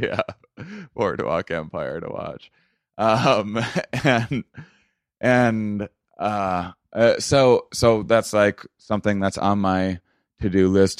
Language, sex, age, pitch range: English, male, 30-49, 80-95 Hz